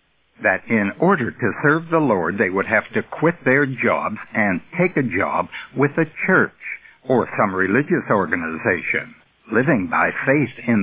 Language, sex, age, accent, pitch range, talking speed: English, male, 60-79, American, 105-155 Hz, 160 wpm